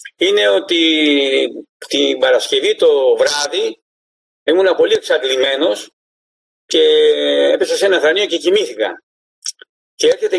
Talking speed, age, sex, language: 105 wpm, 50-69, male, Greek